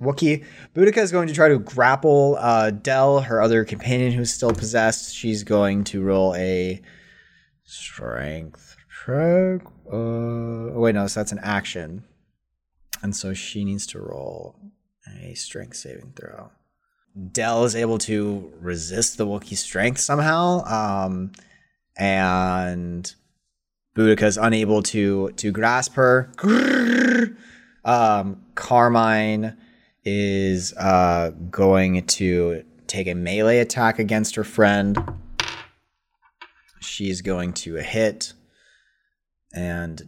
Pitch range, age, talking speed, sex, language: 95-120 Hz, 30-49, 115 wpm, male, English